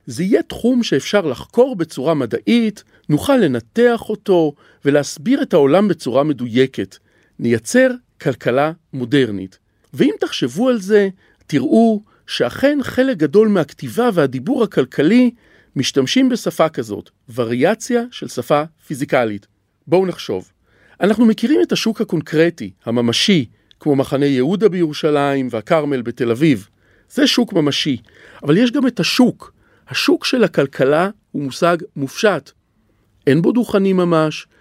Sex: male